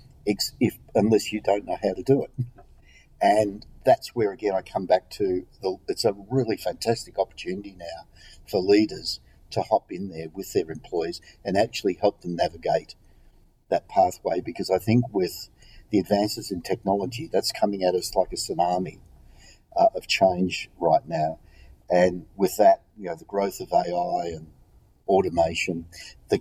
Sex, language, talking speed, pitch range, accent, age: male, English, 165 wpm, 85-105 Hz, Australian, 50-69